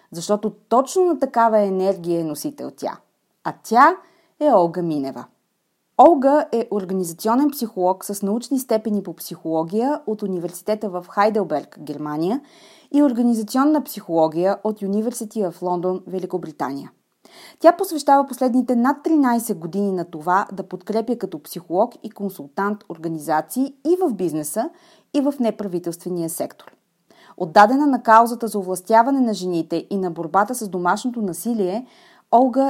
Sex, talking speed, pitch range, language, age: female, 130 wpm, 180-250 Hz, Bulgarian, 30-49